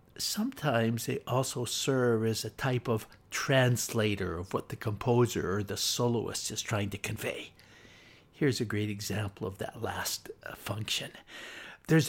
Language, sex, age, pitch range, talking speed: English, male, 60-79, 110-140 Hz, 150 wpm